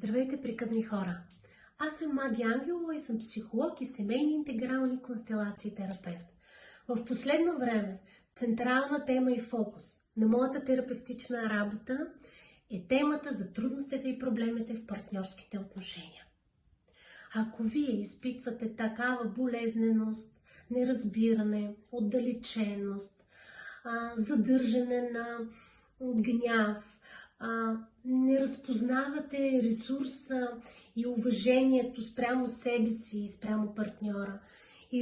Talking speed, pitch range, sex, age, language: 100 wpm, 220-255 Hz, female, 30-49, Bulgarian